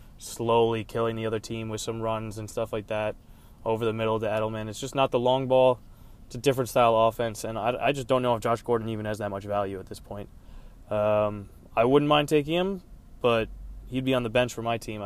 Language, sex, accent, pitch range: English, male, American, 105-120 Hz